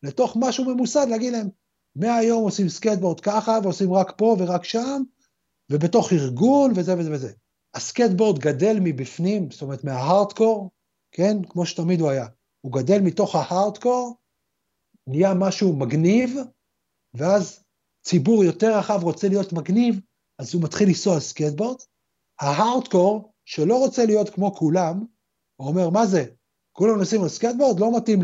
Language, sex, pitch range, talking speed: Hebrew, male, 165-220 Hz, 130 wpm